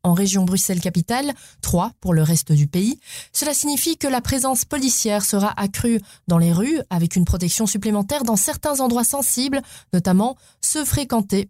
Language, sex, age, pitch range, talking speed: French, female, 20-39, 180-235 Hz, 160 wpm